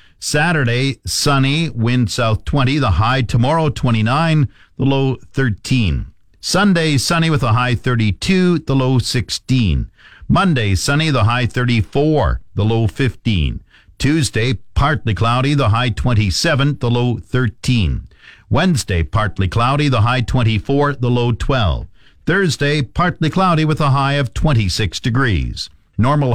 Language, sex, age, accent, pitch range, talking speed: English, male, 50-69, American, 105-145 Hz, 130 wpm